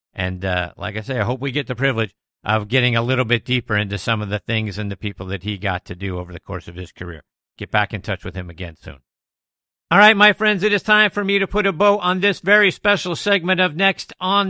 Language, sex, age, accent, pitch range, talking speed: English, male, 50-69, American, 125-195 Hz, 270 wpm